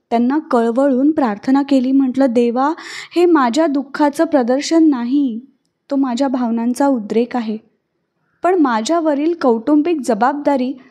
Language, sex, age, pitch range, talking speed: Marathi, female, 20-39, 220-275 Hz, 110 wpm